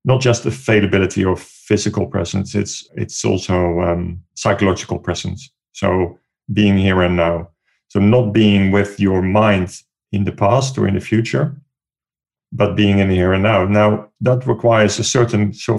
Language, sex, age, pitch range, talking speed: English, male, 40-59, 100-120 Hz, 165 wpm